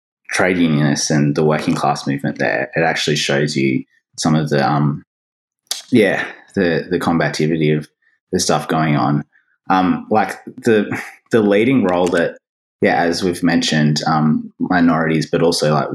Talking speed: 155 wpm